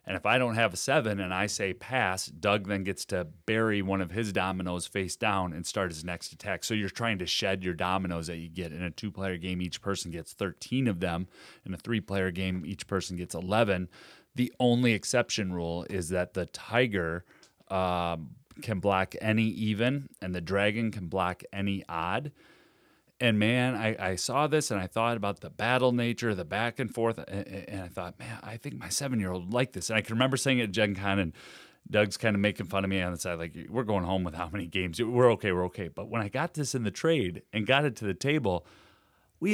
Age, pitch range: 30-49, 95-125 Hz